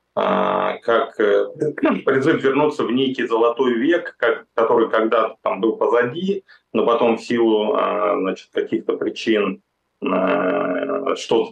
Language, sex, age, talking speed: Russian, male, 30-49, 105 wpm